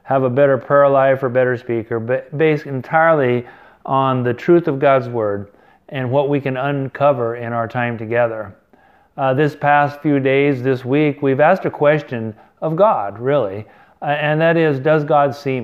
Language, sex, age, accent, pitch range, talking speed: English, male, 40-59, American, 125-150 Hz, 175 wpm